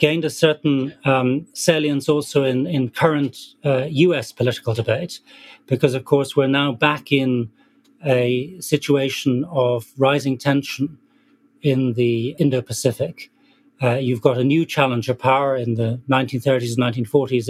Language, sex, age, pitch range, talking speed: English, male, 40-59, 125-155 Hz, 135 wpm